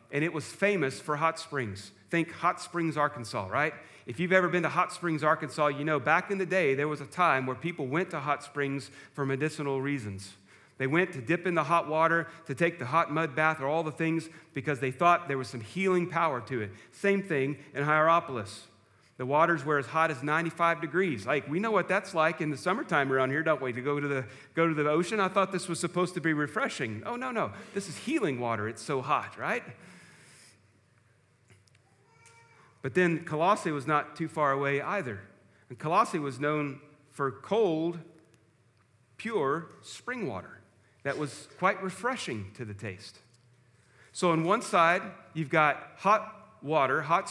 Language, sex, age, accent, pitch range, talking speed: English, male, 40-59, American, 130-170 Hz, 190 wpm